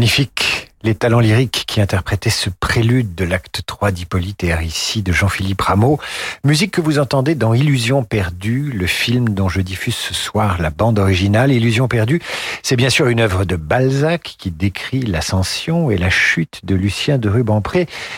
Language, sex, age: French, male, 50-69